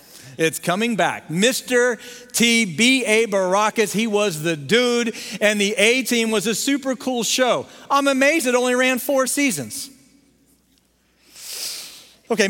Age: 40-59